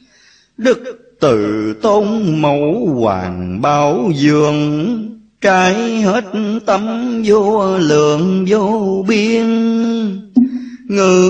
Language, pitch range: Vietnamese, 160-235 Hz